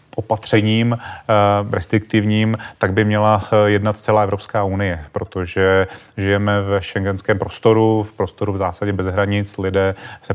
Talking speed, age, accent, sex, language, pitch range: 130 wpm, 30-49, native, male, Czech, 95-105 Hz